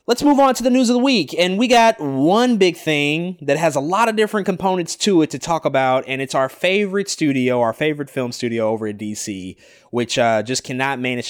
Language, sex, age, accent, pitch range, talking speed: English, male, 20-39, American, 110-150 Hz, 235 wpm